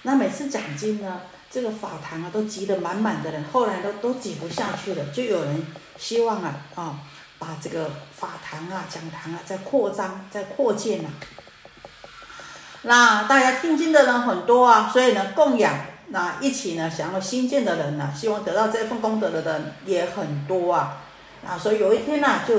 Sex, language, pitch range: female, Chinese, 165-225 Hz